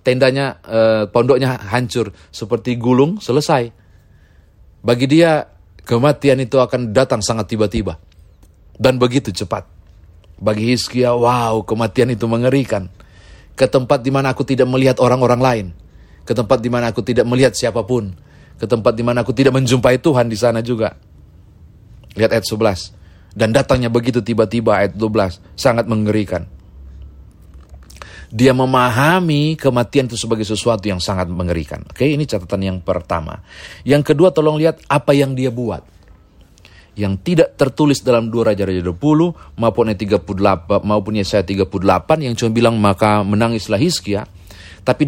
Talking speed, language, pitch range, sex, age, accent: 135 wpm, Indonesian, 95-130 Hz, male, 30-49, native